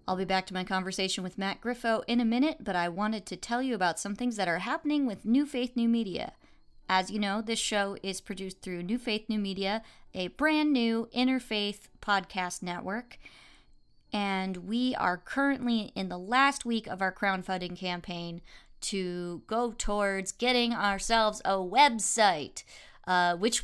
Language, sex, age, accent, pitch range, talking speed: English, female, 30-49, American, 185-230 Hz, 175 wpm